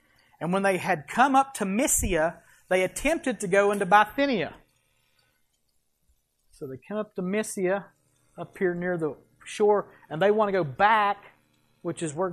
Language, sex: English, male